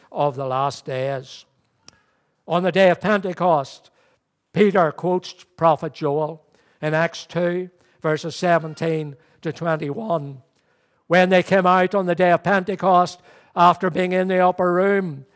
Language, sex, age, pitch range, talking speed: English, male, 60-79, 155-185 Hz, 135 wpm